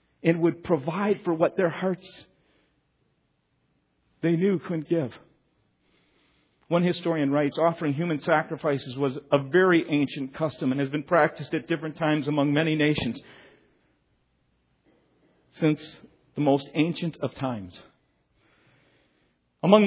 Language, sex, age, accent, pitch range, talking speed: English, male, 50-69, American, 145-195 Hz, 120 wpm